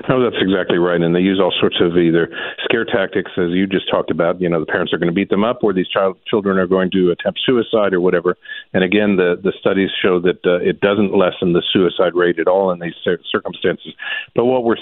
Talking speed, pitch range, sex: 245 wpm, 85-105 Hz, male